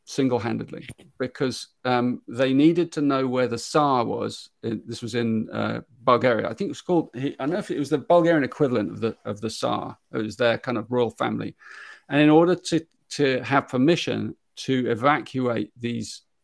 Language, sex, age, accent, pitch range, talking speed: English, male, 40-59, British, 115-140 Hz, 200 wpm